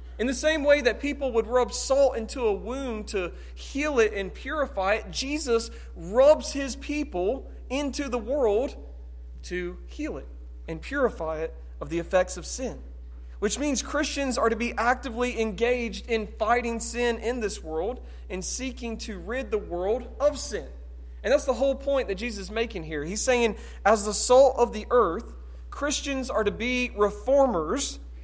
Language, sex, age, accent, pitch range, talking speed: English, male, 40-59, American, 185-255 Hz, 170 wpm